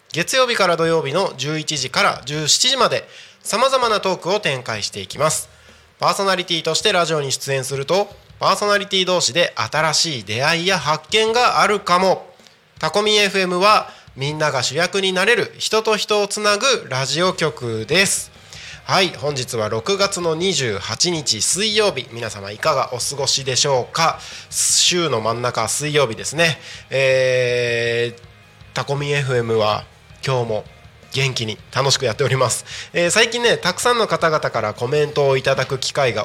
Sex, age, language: male, 20-39, Japanese